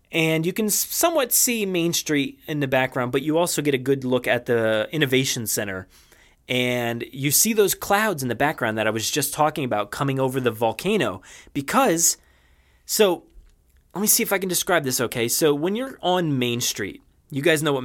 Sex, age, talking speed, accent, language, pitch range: male, 30-49, 200 wpm, American, English, 120-175 Hz